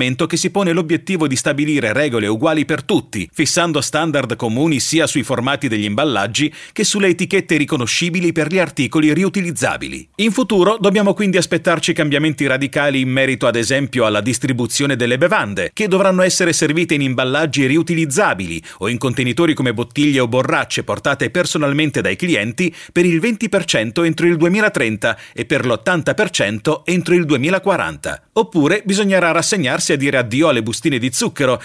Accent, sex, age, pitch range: native, male, 40-59, 135-180 Hz